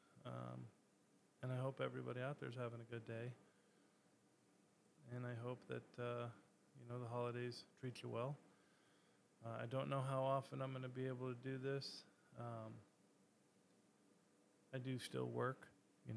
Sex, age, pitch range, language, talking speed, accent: male, 20-39, 100-125 Hz, English, 160 wpm, American